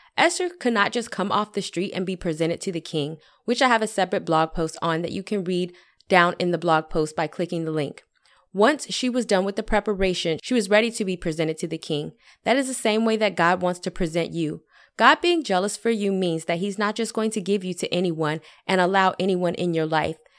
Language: English